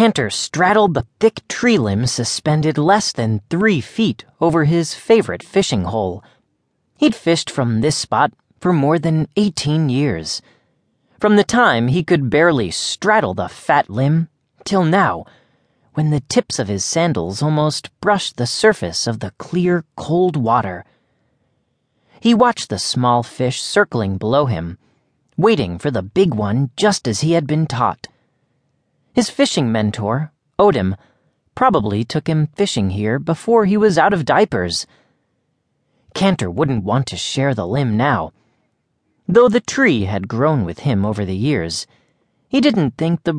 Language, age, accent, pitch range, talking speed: English, 30-49, American, 115-180 Hz, 150 wpm